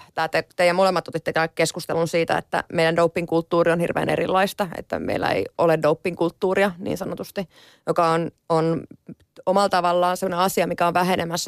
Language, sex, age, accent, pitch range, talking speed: Finnish, female, 30-49, native, 160-180 Hz, 160 wpm